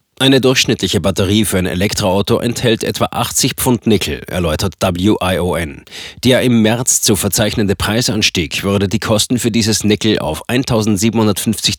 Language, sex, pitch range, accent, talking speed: German, male, 100-120 Hz, German, 135 wpm